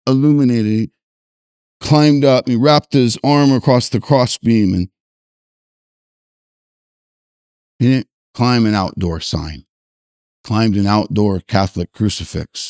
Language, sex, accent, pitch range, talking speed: English, male, American, 90-120 Hz, 115 wpm